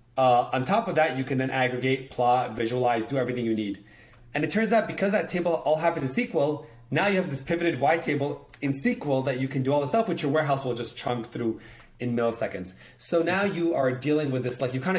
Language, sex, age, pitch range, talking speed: English, male, 30-49, 125-165 Hz, 245 wpm